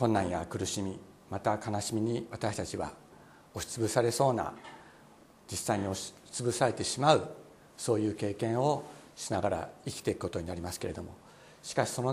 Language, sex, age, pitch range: Japanese, male, 60-79, 95-125 Hz